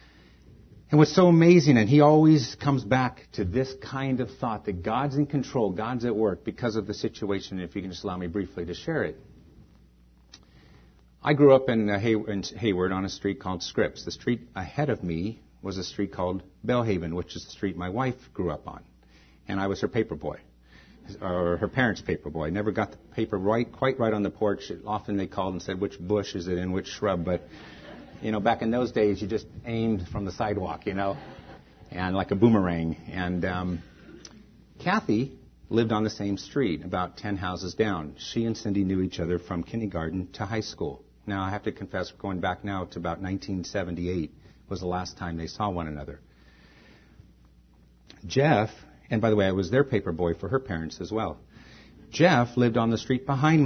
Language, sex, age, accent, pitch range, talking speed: English, male, 50-69, American, 90-115 Hz, 200 wpm